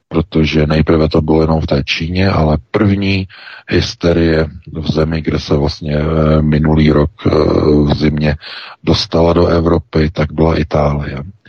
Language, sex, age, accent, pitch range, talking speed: Czech, male, 50-69, native, 75-90 Hz, 135 wpm